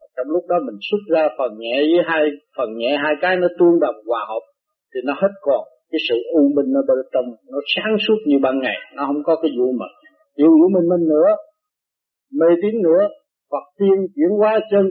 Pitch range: 155-240 Hz